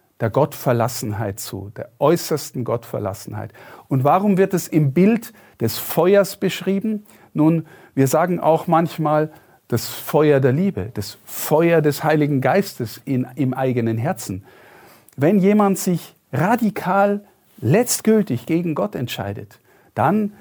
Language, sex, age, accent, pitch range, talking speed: German, male, 50-69, German, 130-185 Hz, 120 wpm